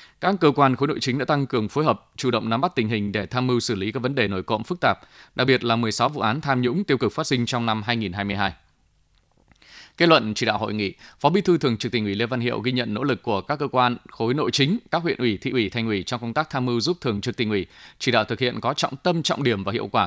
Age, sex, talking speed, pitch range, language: 20-39, male, 300 wpm, 115-145 Hz, Vietnamese